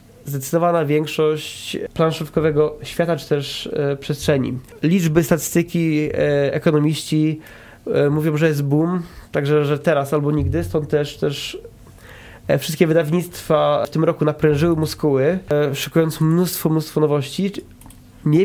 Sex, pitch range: male, 140-170 Hz